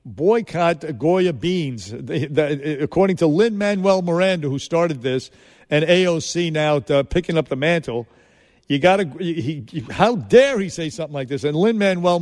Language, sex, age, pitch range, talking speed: English, male, 50-69, 145-180 Hz, 160 wpm